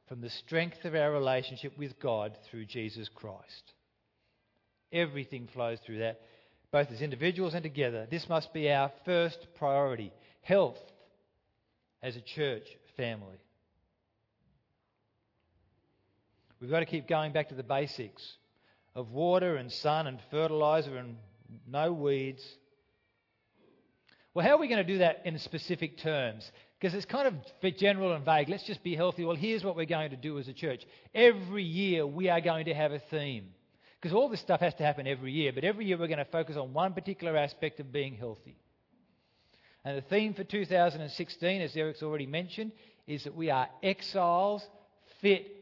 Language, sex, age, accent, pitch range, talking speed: English, male, 40-59, Australian, 120-170 Hz, 170 wpm